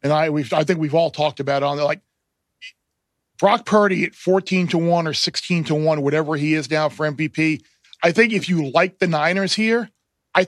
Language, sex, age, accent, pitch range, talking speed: English, male, 40-59, American, 150-185 Hz, 210 wpm